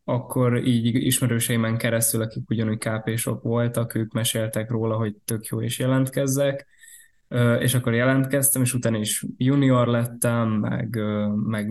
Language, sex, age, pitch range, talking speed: Hungarian, male, 20-39, 110-125 Hz, 135 wpm